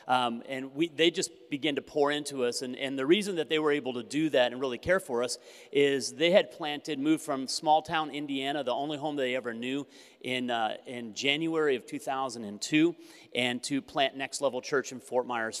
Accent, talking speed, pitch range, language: American, 215 wpm, 125-150 Hz, English